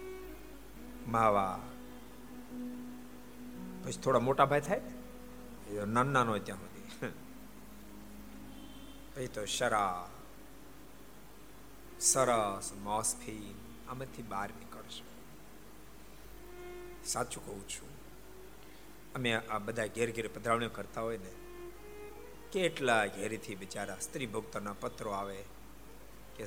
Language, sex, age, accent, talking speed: Gujarati, male, 60-79, native, 50 wpm